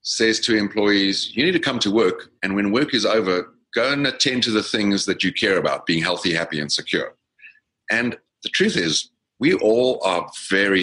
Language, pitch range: English, 90-110 Hz